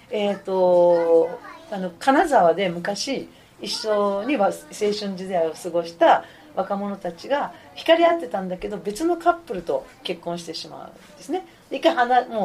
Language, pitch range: Japanese, 175-265 Hz